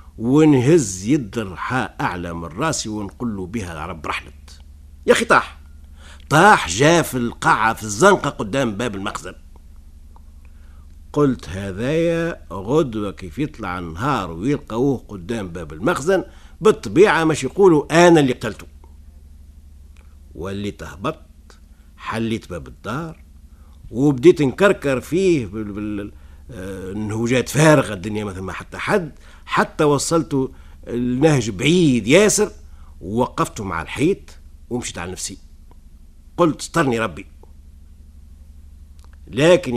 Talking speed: 105 wpm